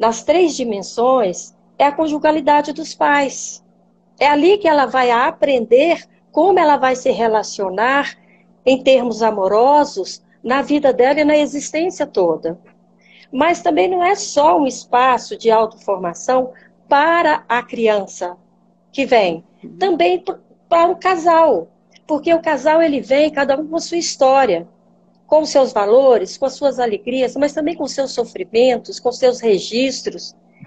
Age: 40-59